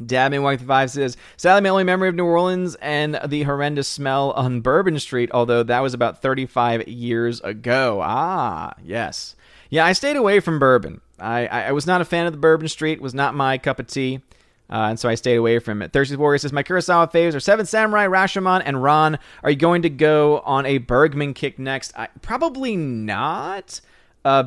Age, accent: 30-49, American